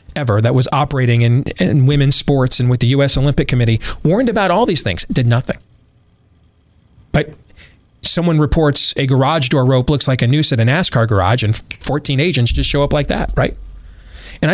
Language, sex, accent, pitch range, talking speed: English, male, American, 115-150 Hz, 190 wpm